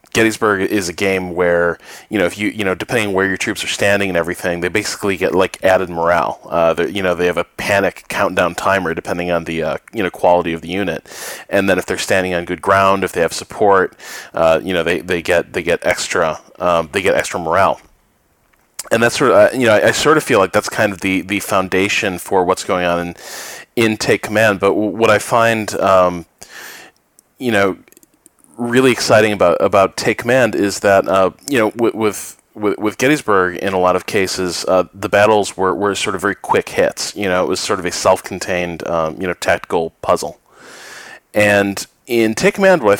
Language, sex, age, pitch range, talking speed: English, male, 30-49, 90-105 Hz, 220 wpm